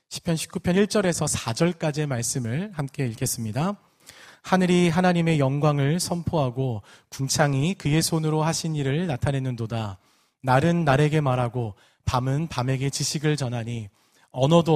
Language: Korean